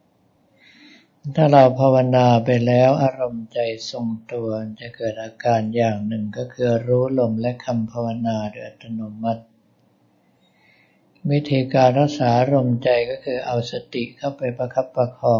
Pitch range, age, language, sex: 115-130 Hz, 60-79, Thai, male